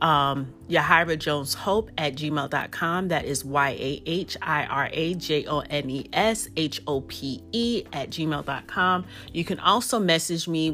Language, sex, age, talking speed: English, female, 30-49, 170 wpm